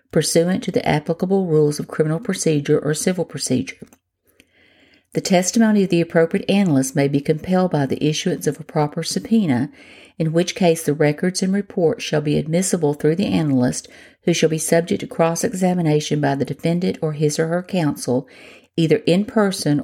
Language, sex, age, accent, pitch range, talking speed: English, female, 50-69, American, 145-185 Hz, 170 wpm